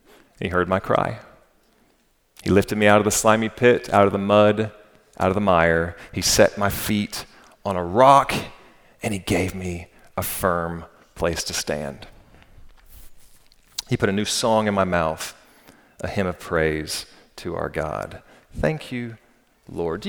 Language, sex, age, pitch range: English, male, 40-59, 95-125 Hz